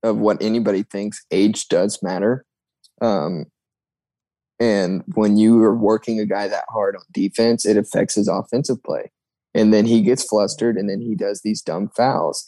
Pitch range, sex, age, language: 100-115 Hz, male, 20-39, English